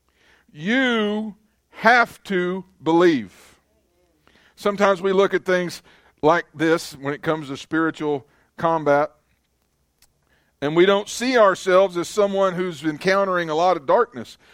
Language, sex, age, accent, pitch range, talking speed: English, male, 50-69, American, 125-170 Hz, 125 wpm